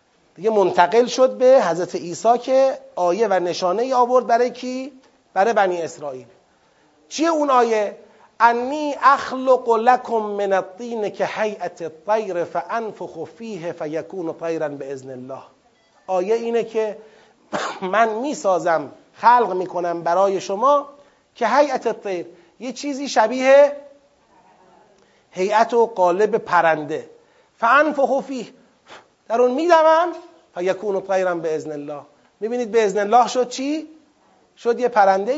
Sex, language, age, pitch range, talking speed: male, Persian, 30-49, 180-250 Hz, 125 wpm